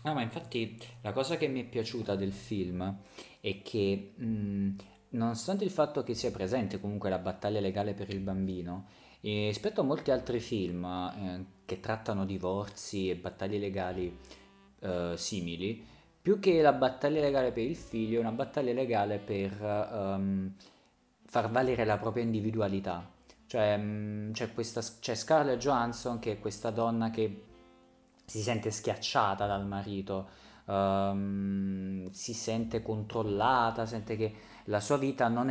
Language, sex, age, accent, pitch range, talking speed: Italian, male, 30-49, native, 100-120 Hz, 150 wpm